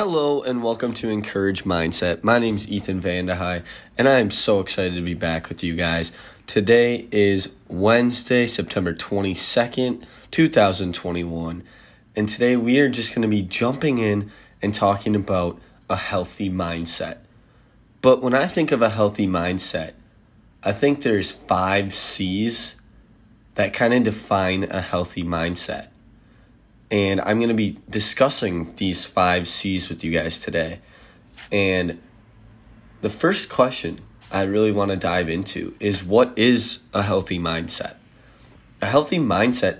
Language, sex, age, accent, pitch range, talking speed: English, male, 20-39, American, 90-115 Hz, 140 wpm